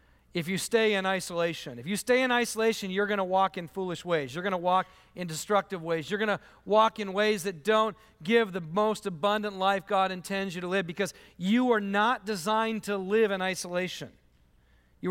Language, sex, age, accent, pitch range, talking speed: English, male, 40-59, American, 185-210 Hz, 205 wpm